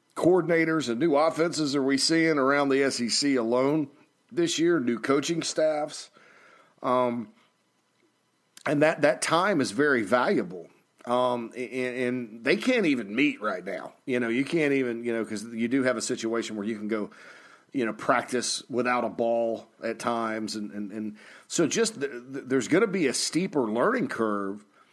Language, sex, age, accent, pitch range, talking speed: English, male, 40-59, American, 115-140 Hz, 175 wpm